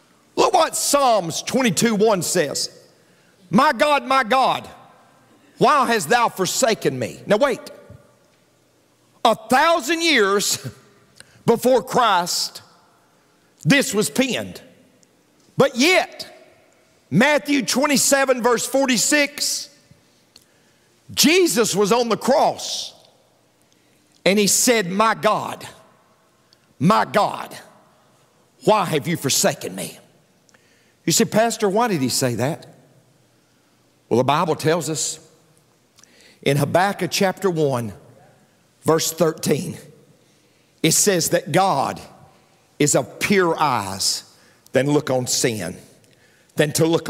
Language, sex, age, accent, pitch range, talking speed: English, male, 50-69, American, 155-230 Hz, 100 wpm